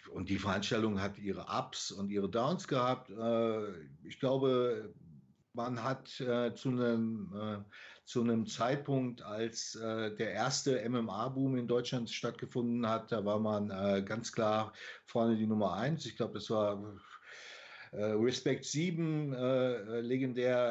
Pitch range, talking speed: 110-130 Hz, 120 wpm